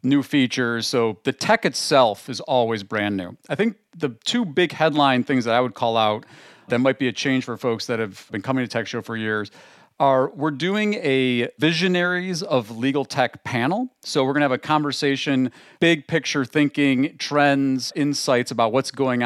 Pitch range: 115-145 Hz